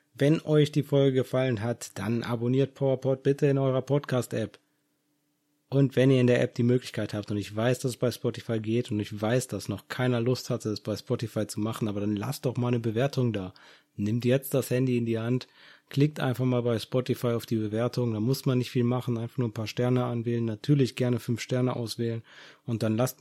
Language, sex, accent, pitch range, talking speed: German, male, German, 115-135 Hz, 220 wpm